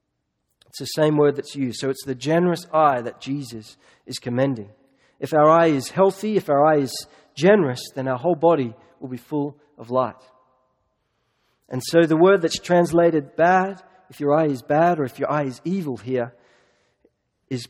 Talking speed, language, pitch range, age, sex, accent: 185 wpm, English, 135-180 Hz, 40-59, male, Australian